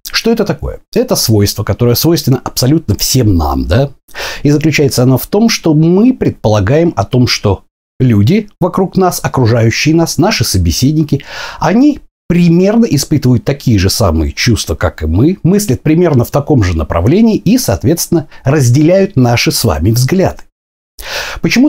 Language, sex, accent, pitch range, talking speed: Russian, male, native, 115-165 Hz, 145 wpm